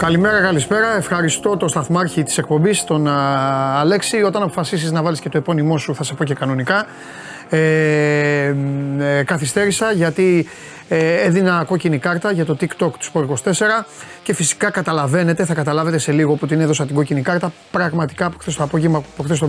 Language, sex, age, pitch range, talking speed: Greek, male, 30-49, 145-180 Hz, 170 wpm